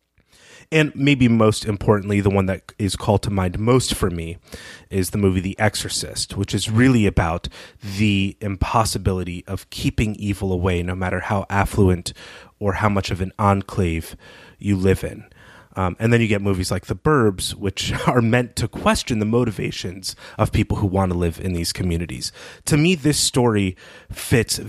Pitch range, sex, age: 95-115 Hz, male, 30-49